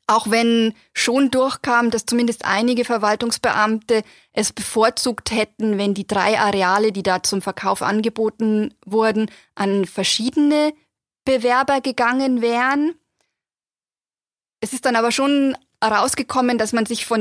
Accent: German